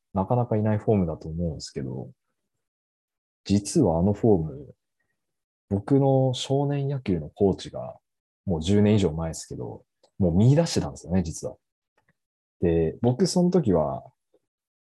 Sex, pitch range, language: male, 85-120 Hz, Japanese